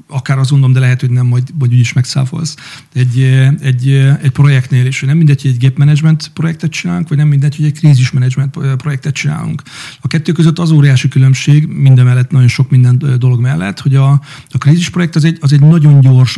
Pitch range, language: 130-150 Hz, Hungarian